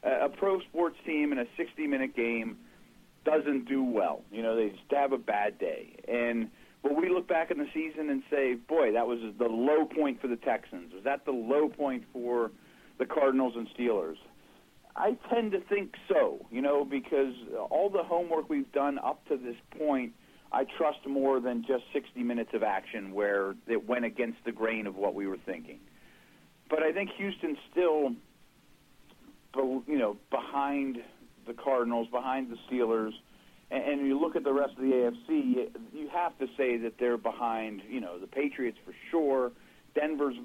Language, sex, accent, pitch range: English, male, American, 120-155 Hz